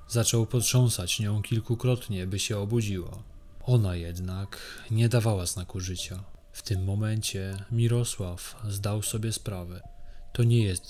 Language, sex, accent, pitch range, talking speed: Polish, male, native, 95-115 Hz, 125 wpm